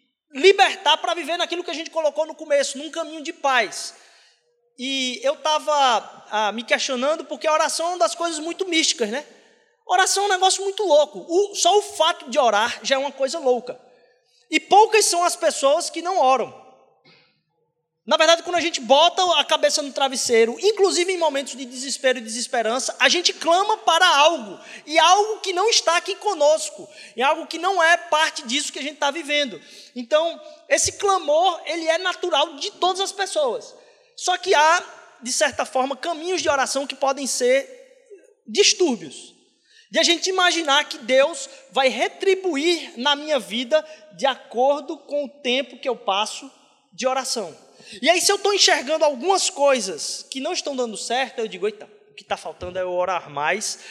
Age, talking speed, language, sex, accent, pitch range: 20-39, 180 wpm, Portuguese, male, Brazilian, 265-345 Hz